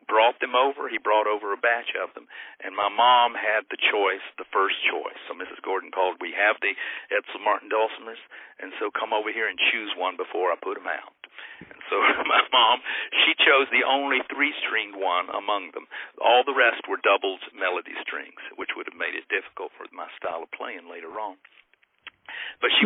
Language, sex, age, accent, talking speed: English, male, 50-69, American, 195 wpm